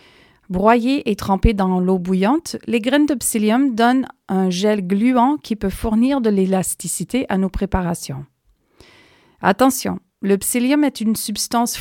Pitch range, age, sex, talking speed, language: 195-255 Hz, 40-59, female, 140 wpm, French